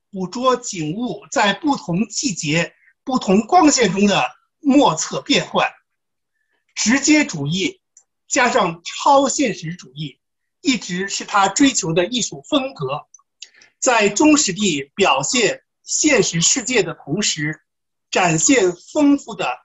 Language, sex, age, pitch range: Chinese, male, 60-79, 175-275 Hz